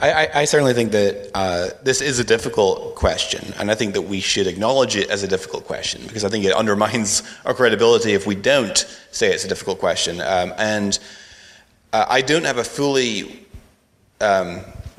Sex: male